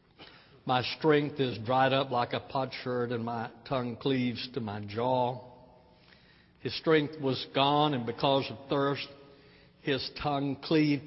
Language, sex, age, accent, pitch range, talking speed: English, male, 60-79, American, 125-145 Hz, 140 wpm